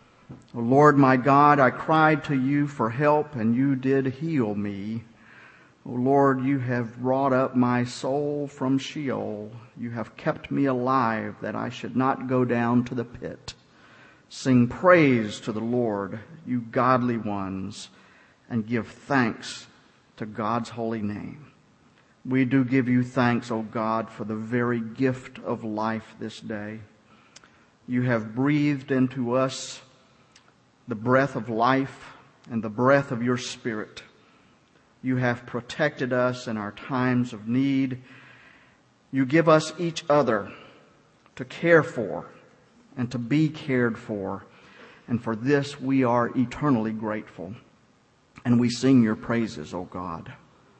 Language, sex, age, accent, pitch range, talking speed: English, male, 50-69, American, 115-135 Hz, 145 wpm